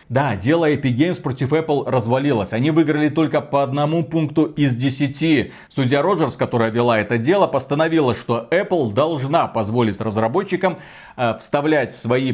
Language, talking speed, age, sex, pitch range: Russian, 150 wpm, 40-59, male, 125-155 Hz